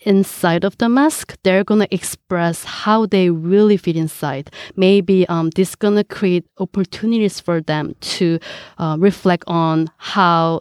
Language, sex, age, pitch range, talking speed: English, female, 20-39, 170-205 Hz, 155 wpm